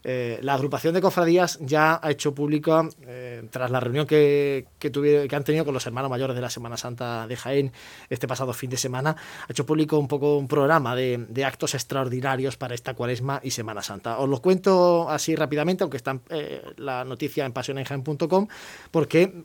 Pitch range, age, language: 130-155 Hz, 20-39, Spanish